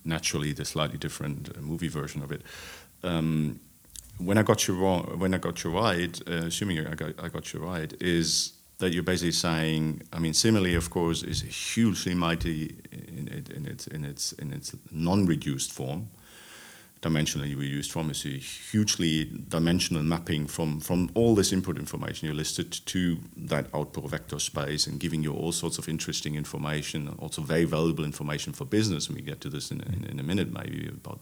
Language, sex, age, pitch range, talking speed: English, male, 40-59, 80-90 Hz, 190 wpm